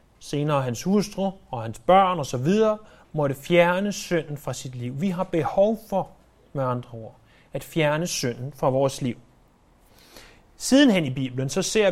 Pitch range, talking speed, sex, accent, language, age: 145-190 Hz, 155 wpm, male, native, Danish, 30-49